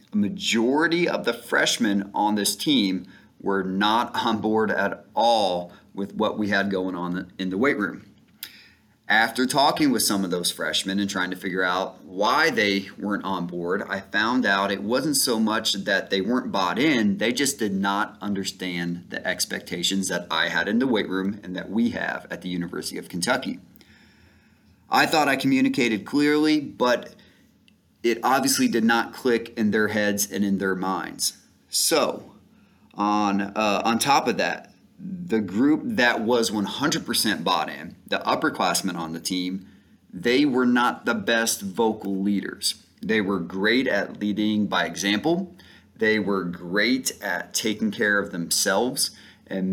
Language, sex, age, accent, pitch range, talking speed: English, male, 30-49, American, 95-115 Hz, 165 wpm